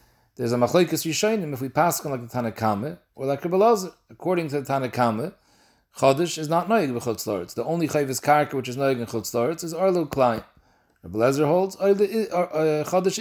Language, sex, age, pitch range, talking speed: English, male, 40-59, 130-170 Hz, 175 wpm